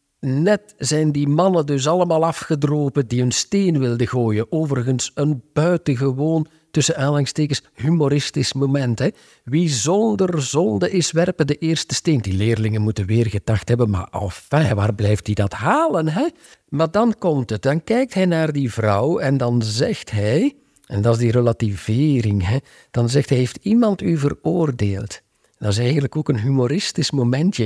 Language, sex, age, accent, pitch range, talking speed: Dutch, male, 50-69, Dutch, 110-155 Hz, 165 wpm